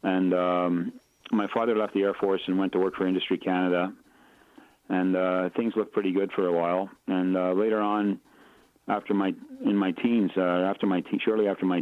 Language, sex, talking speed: English, male, 205 wpm